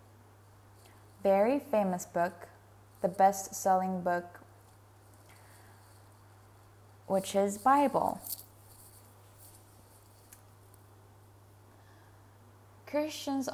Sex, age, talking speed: female, 10-29, 50 wpm